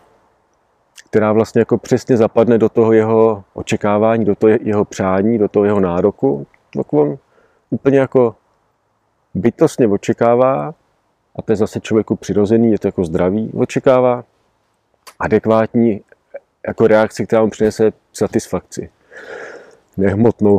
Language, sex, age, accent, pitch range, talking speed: Czech, male, 40-59, native, 95-115 Hz, 120 wpm